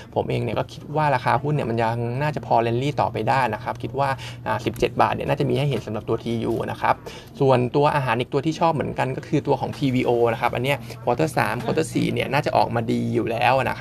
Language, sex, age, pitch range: Thai, male, 20-39, 115-145 Hz